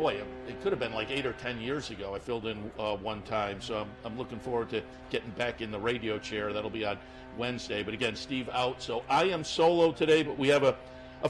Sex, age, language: male, 50-69, English